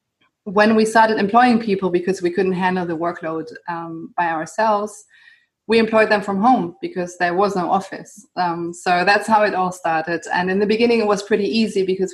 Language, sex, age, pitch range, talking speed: English, female, 30-49, 170-210 Hz, 200 wpm